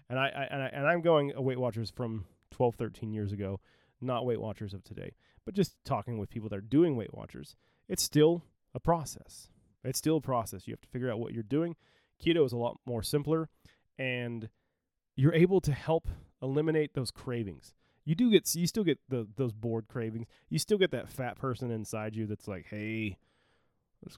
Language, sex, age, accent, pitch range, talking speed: English, male, 30-49, American, 105-135 Hz, 205 wpm